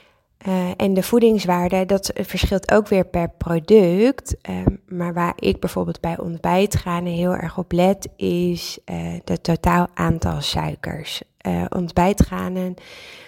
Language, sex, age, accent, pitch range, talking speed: Dutch, female, 20-39, Dutch, 175-210 Hz, 130 wpm